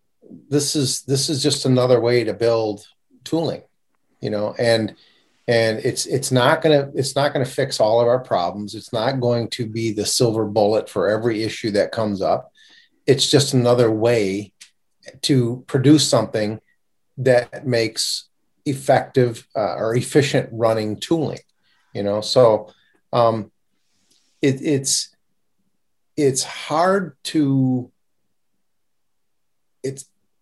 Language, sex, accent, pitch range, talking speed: English, male, American, 110-135 Hz, 130 wpm